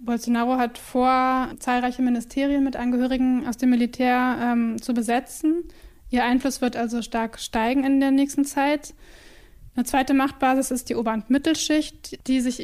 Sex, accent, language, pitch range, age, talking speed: female, German, German, 240-275 Hz, 20-39, 155 wpm